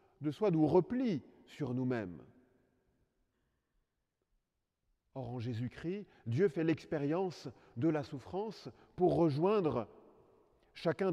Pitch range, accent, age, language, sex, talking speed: 105-165 Hz, French, 40-59, French, male, 95 wpm